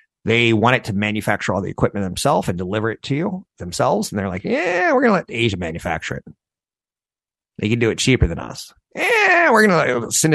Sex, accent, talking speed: male, American, 210 wpm